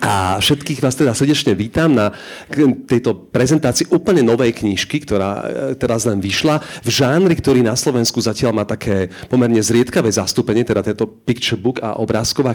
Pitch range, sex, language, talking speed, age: 110-140 Hz, male, Slovak, 160 wpm, 40-59